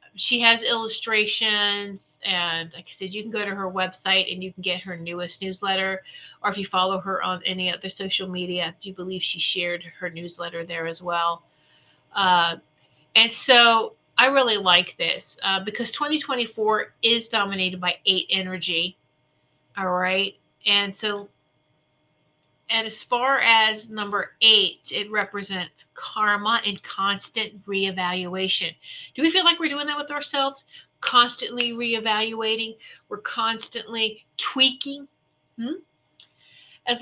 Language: English